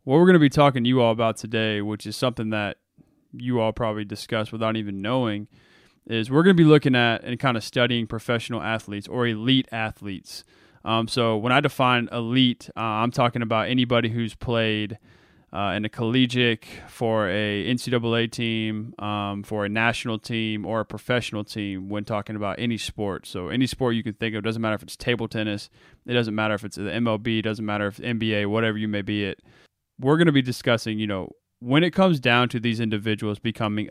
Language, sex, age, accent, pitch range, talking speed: English, male, 20-39, American, 105-125 Hz, 210 wpm